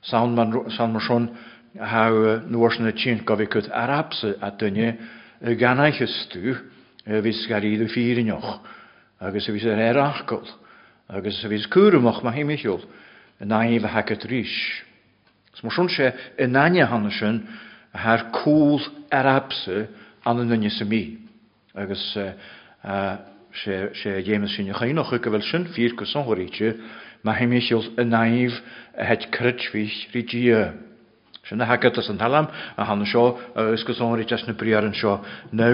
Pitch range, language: 110-125 Hz, English